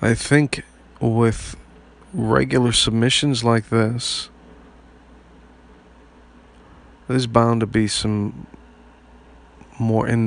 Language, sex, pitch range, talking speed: English, male, 85-115 Hz, 80 wpm